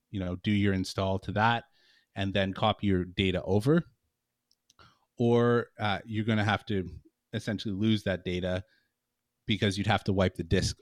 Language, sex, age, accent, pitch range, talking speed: English, male, 30-49, American, 95-115 Hz, 170 wpm